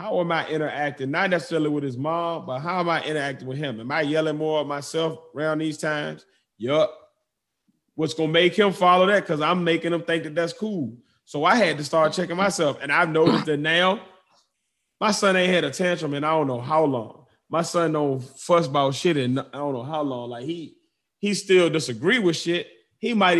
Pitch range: 140-170 Hz